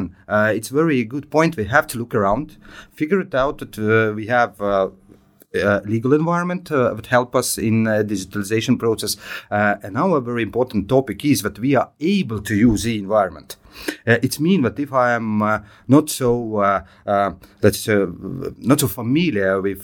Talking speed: 190 wpm